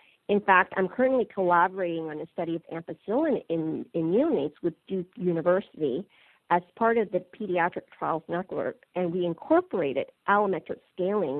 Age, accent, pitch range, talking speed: 50-69, American, 175-230 Hz, 140 wpm